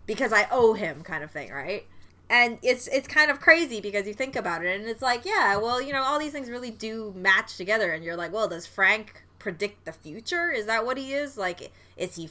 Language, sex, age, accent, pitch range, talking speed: English, female, 20-39, American, 175-235 Hz, 245 wpm